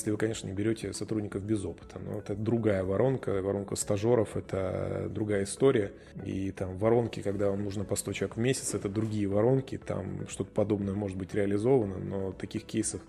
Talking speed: 185 wpm